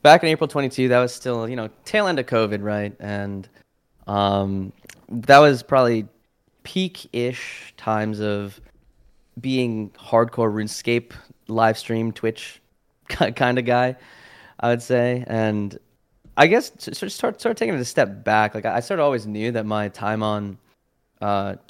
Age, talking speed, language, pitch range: 20-39, 150 wpm, English, 105-125 Hz